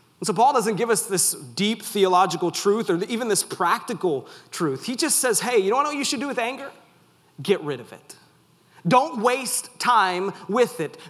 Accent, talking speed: American, 195 wpm